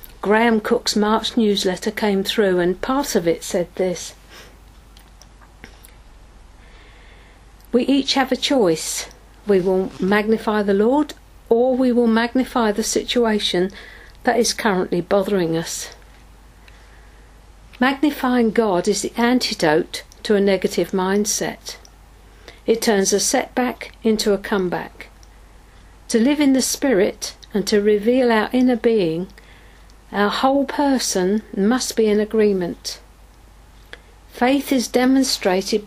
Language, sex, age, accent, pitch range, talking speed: English, female, 50-69, British, 200-245 Hz, 115 wpm